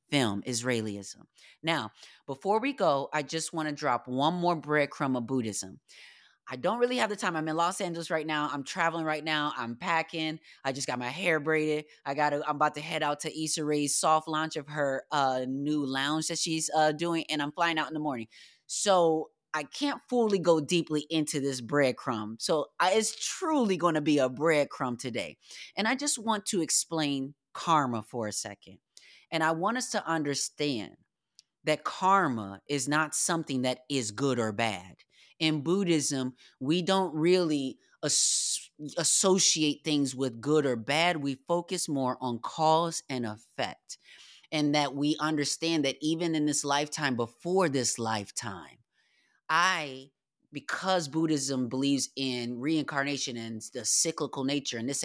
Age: 20-39